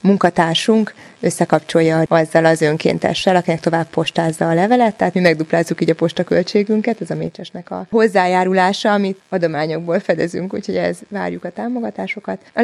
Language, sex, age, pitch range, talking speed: Hungarian, female, 20-39, 170-200 Hz, 145 wpm